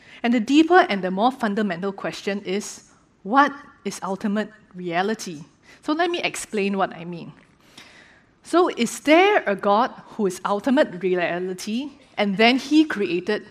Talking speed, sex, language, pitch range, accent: 145 wpm, female, English, 190-265 Hz, Malaysian